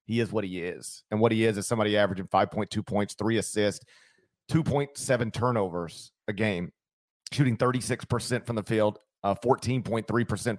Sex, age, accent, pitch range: male, 40-59, American, 105-140 Hz